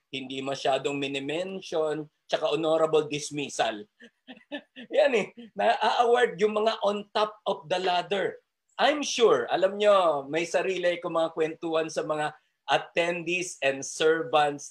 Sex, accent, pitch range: male, native, 150-210 Hz